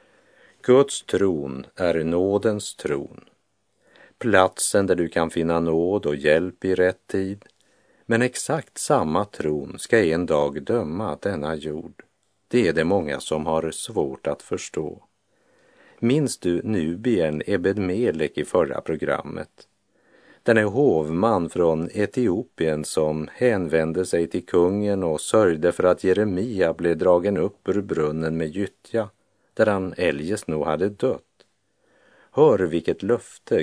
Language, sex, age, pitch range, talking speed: Italian, male, 50-69, 80-100 Hz, 130 wpm